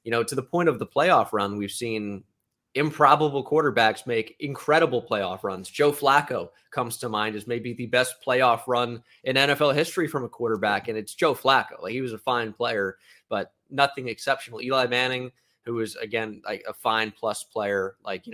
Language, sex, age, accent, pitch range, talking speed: English, male, 20-39, American, 115-150 Hz, 195 wpm